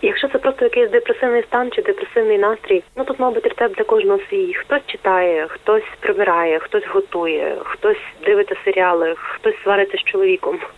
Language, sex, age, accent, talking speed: Ukrainian, female, 30-49, native, 165 wpm